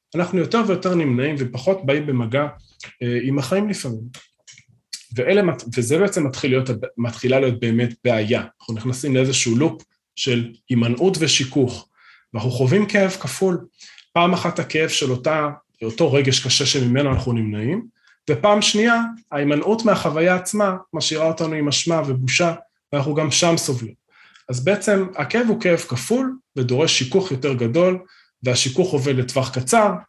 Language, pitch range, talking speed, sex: Hebrew, 125-185 Hz, 135 wpm, male